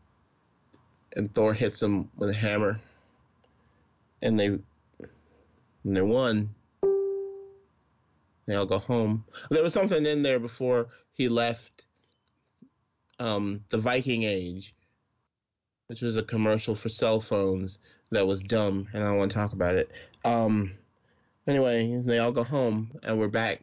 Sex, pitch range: male, 95-115 Hz